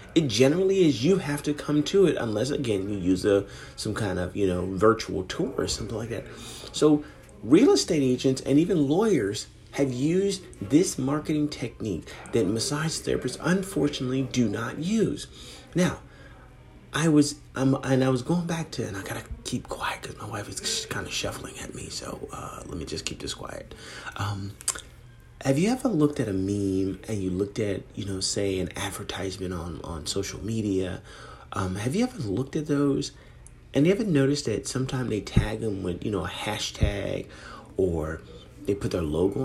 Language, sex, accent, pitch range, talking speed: English, male, American, 100-150 Hz, 185 wpm